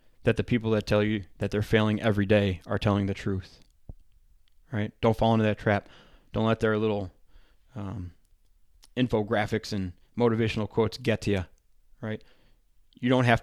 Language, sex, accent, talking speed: English, male, American, 165 wpm